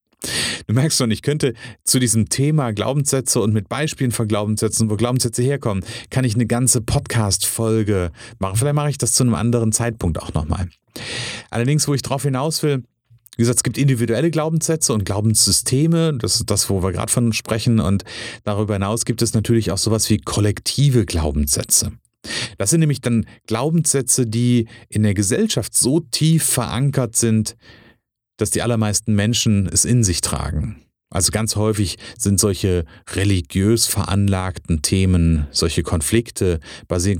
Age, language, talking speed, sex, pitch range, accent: 30-49, German, 160 wpm, male, 95-125 Hz, German